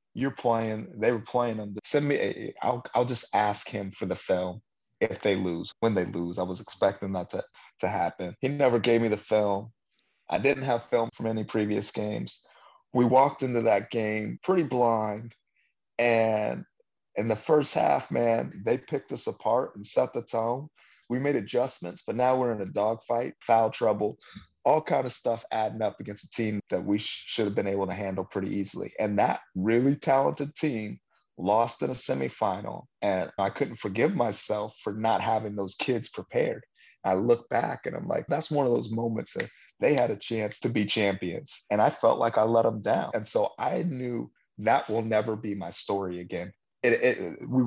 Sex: male